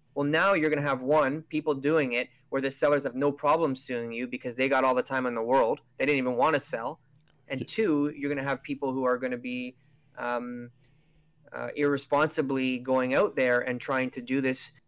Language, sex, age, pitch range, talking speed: English, male, 20-39, 120-150 Hz, 225 wpm